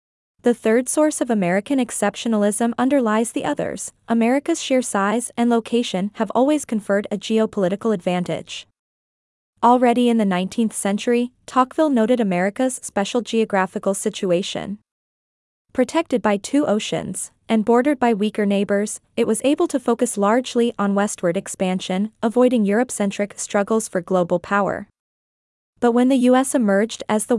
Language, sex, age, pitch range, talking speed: Vietnamese, female, 20-39, 200-245 Hz, 135 wpm